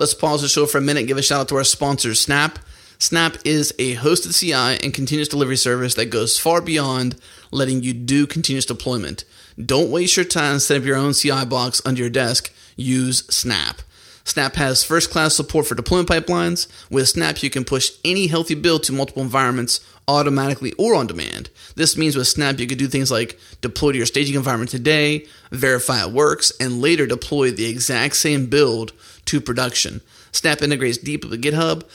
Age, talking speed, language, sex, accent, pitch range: 30-49, 195 wpm, English, male, American, 125-150 Hz